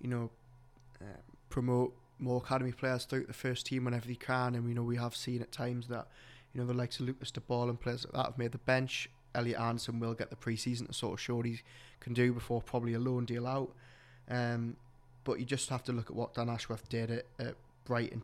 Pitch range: 120-125 Hz